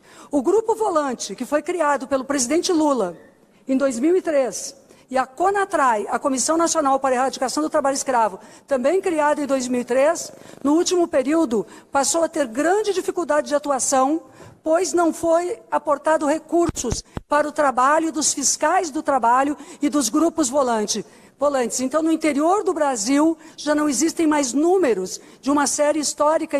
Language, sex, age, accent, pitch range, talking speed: Portuguese, female, 50-69, Brazilian, 265-325 Hz, 150 wpm